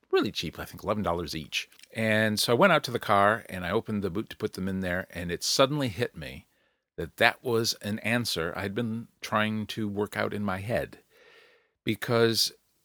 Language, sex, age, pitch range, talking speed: English, male, 50-69, 90-115 Hz, 215 wpm